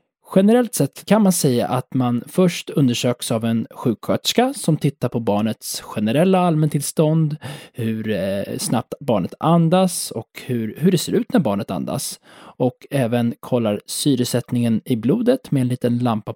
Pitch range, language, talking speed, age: 115-160 Hz, Swedish, 145 wpm, 20-39